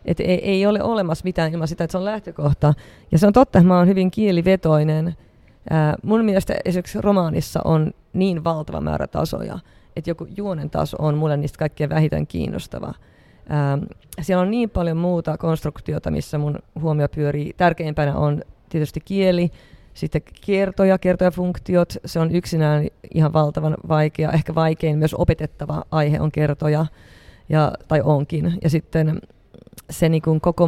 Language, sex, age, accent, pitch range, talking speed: Finnish, female, 30-49, native, 150-180 Hz, 160 wpm